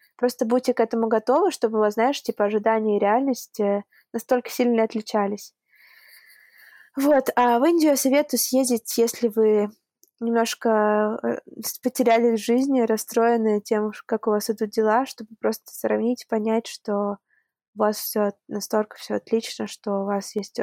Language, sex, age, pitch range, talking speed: Russian, female, 20-39, 205-235 Hz, 150 wpm